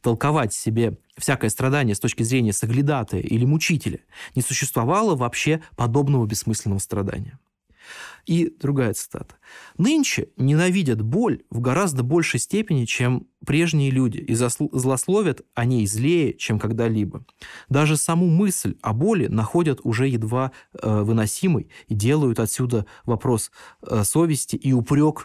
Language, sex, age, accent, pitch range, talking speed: Russian, male, 20-39, native, 115-155 Hz, 130 wpm